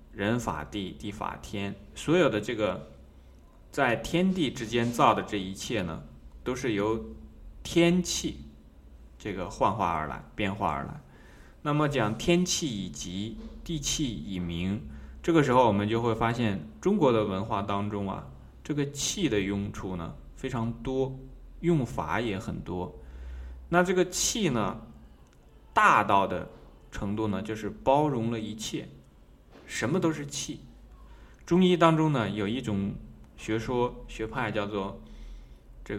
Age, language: 20-39, Chinese